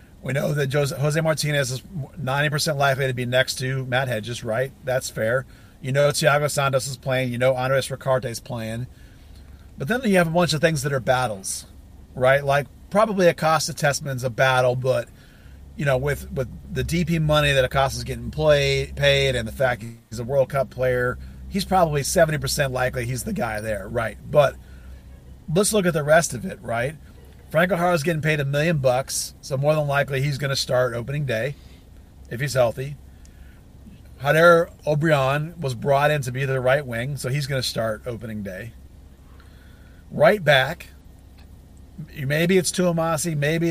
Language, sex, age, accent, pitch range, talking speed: English, male, 40-59, American, 115-150 Hz, 180 wpm